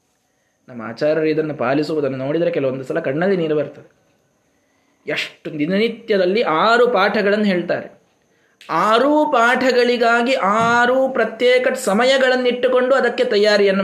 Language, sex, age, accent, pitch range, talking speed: Kannada, male, 20-39, native, 150-250 Hz, 95 wpm